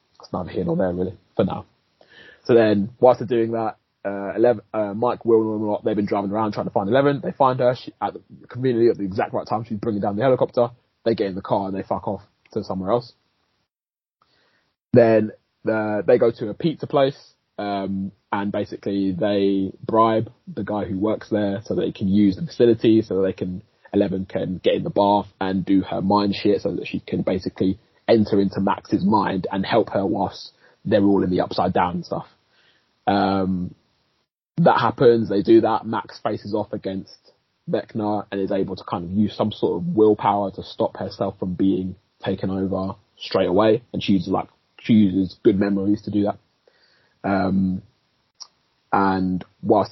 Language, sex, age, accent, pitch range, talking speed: English, male, 20-39, British, 95-110 Hz, 190 wpm